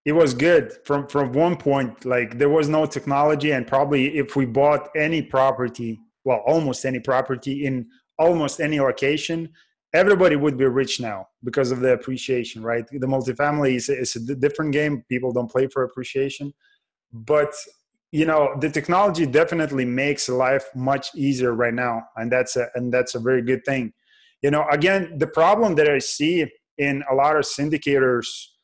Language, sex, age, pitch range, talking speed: English, male, 20-39, 130-150 Hz, 170 wpm